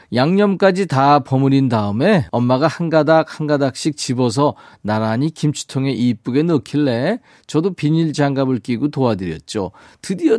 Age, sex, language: 40-59, male, Korean